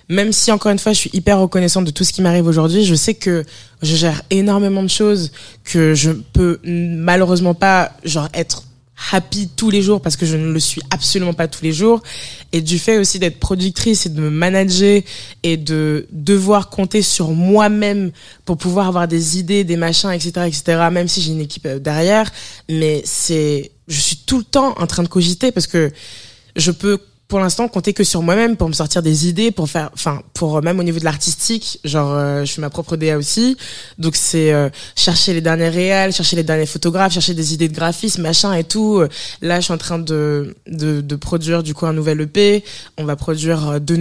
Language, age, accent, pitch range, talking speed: French, 20-39, French, 160-200 Hz, 215 wpm